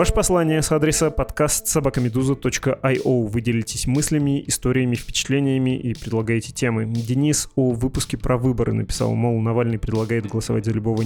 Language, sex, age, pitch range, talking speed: Russian, male, 20-39, 115-140 Hz, 140 wpm